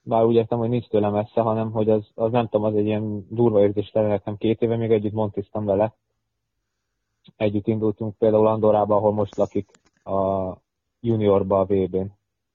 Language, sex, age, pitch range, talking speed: Hungarian, male, 20-39, 100-115 Hz, 175 wpm